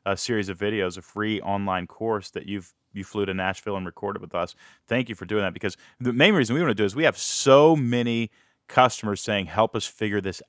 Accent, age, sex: American, 30-49, male